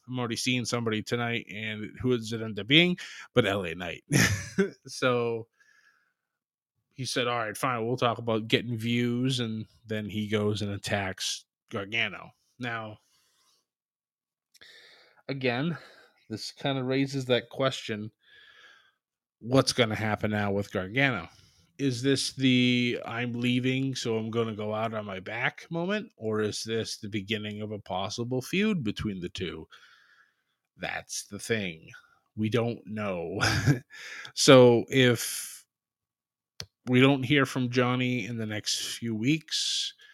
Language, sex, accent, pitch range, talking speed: English, male, American, 105-130 Hz, 140 wpm